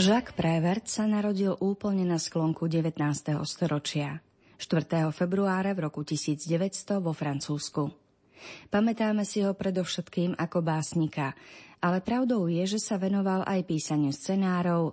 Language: Slovak